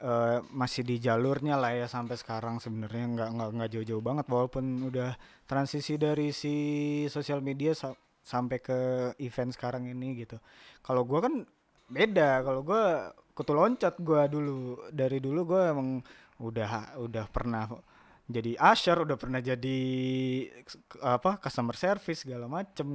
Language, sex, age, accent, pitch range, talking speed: Indonesian, male, 20-39, native, 125-175 Hz, 140 wpm